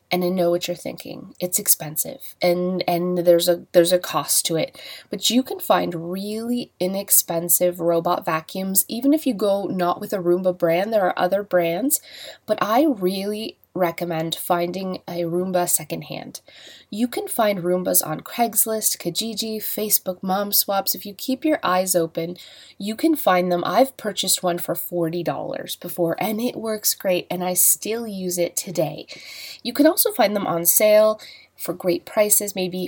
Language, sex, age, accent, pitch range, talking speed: English, female, 20-39, American, 175-220 Hz, 170 wpm